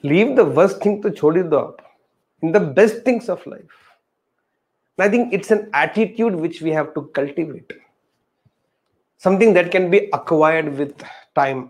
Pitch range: 140-190 Hz